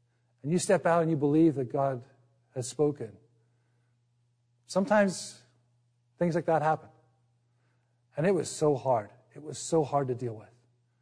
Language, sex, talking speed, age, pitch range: English, male, 150 wpm, 50-69, 120-155 Hz